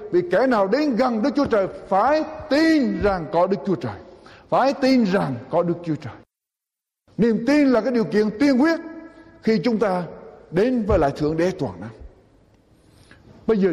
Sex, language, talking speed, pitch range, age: male, Vietnamese, 185 wpm, 215-275 Hz, 60-79